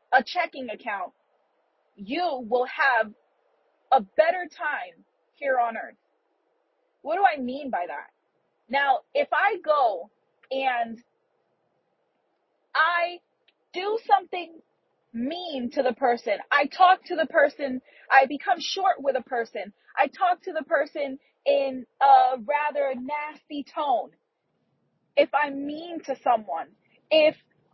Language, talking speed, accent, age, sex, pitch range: English, 120 wpm, American, 30-49, female, 270-345 Hz